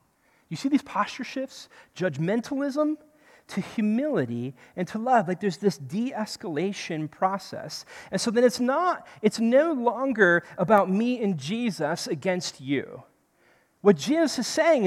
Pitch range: 175-250 Hz